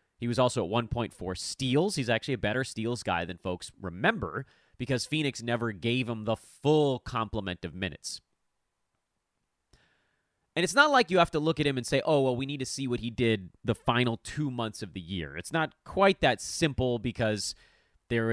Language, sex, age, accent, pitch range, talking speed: English, male, 30-49, American, 105-150 Hz, 195 wpm